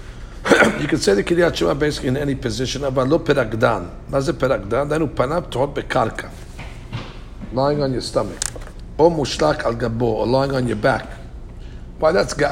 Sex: male